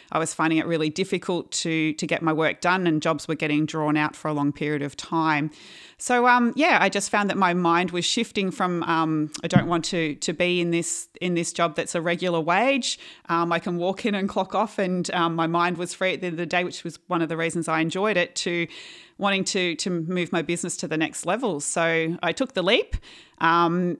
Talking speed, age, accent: 245 wpm, 30-49, Australian